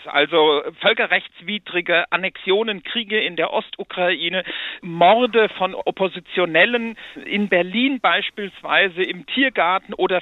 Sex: male